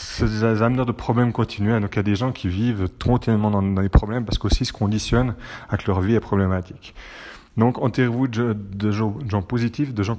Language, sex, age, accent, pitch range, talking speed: French, male, 30-49, French, 100-125 Hz, 225 wpm